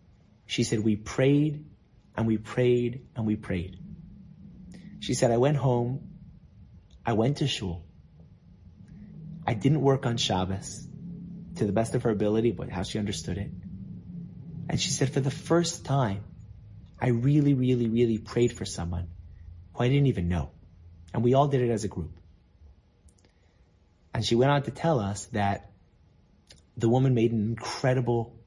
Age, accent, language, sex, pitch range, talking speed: 30-49, American, English, male, 95-130 Hz, 160 wpm